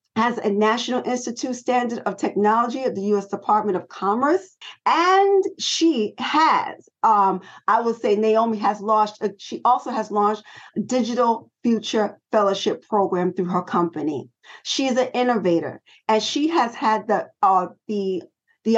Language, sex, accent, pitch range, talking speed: English, female, American, 200-260 Hz, 150 wpm